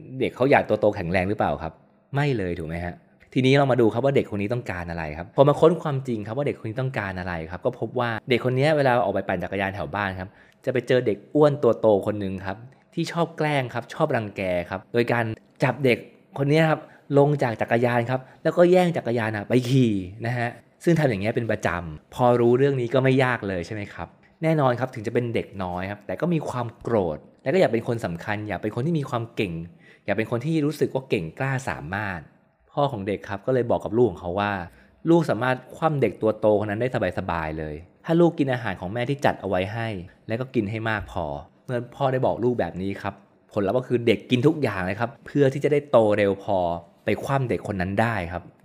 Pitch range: 100-135 Hz